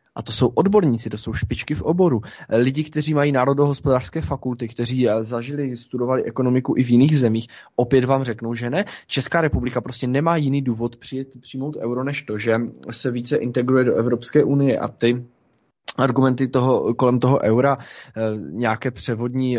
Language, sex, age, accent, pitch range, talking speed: Czech, male, 20-39, native, 115-135 Hz, 165 wpm